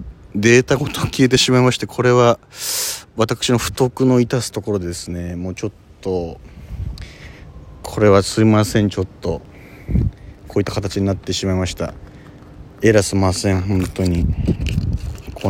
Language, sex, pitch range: Japanese, male, 90-125 Hz